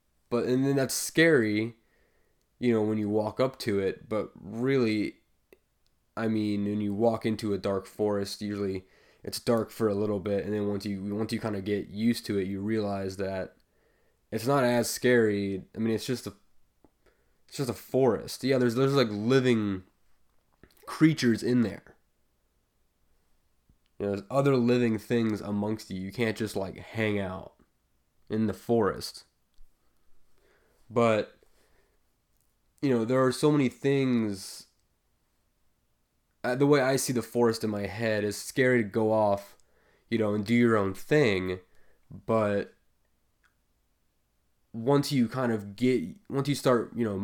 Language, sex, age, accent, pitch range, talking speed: English, male, 20-39, American, 100-120 Hz, 160 wpm